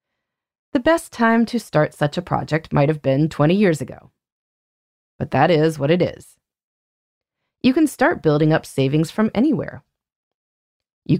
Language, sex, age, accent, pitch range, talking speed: English, female, 30-49, American, 125-185 Hz, 155 wpm